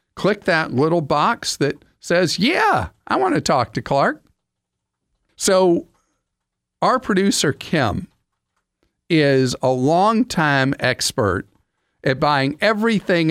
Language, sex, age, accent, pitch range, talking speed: English, male, 50-69, American, 125-175 Hz, 110 wpm